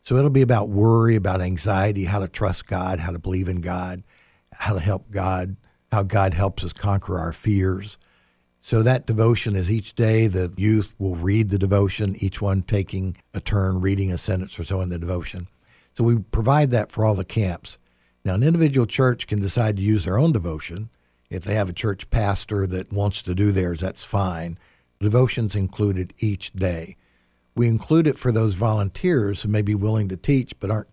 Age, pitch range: 60-79, 95-115 Hz